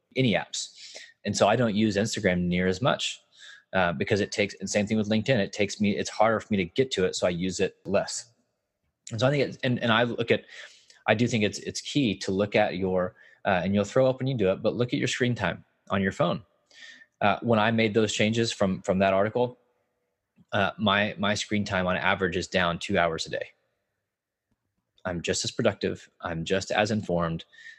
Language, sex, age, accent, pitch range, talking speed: English, male, 20-39, American, 95-120 Hz, 225 wpm